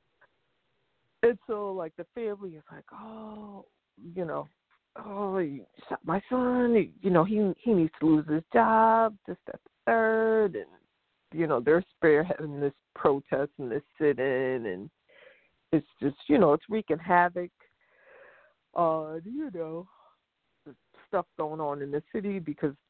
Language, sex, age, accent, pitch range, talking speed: English, female, 50-69, American, 135-175 Hz, 150 wpm